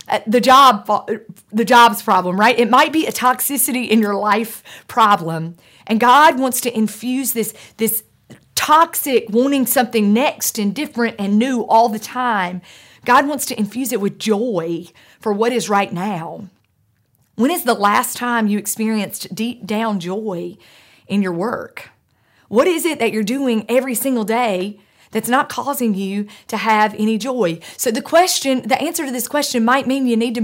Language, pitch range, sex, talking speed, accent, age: English, 200-250 Hz, female, 175 wpm, American, 40-59